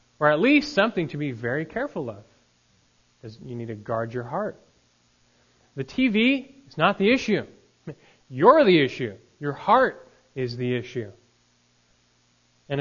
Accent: American